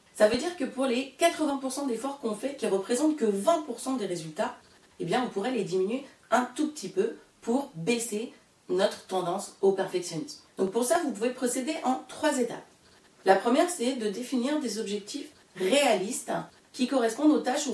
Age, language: 30-49, French